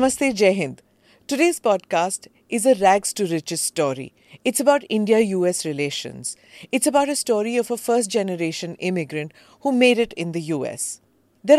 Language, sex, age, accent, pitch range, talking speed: English, female, 50-69, Indian, 170-235 Hz, 145 wpm